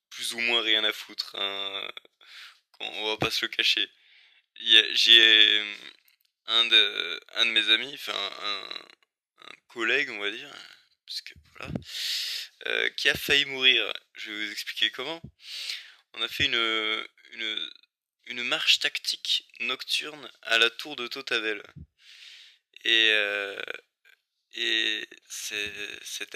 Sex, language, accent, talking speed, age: male, French, French, 135 wpm, 20-39